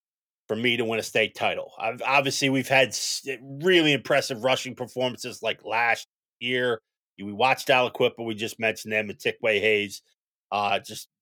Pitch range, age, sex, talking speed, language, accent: 110-140 Hz, 30-49, male, 165 wpm, English, American